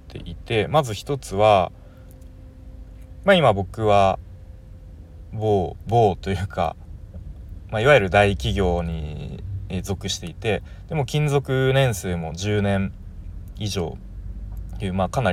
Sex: male